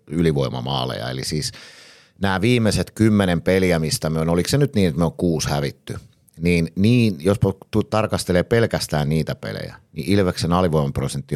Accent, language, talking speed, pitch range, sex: native, Finnish, 155 wpm, 75-105 Hz, male